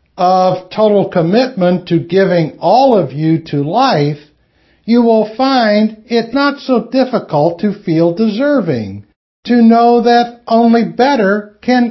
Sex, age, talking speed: male, 60-79, 130 wpm